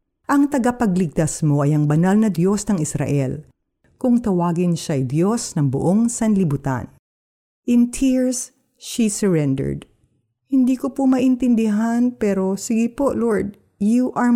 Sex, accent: female, native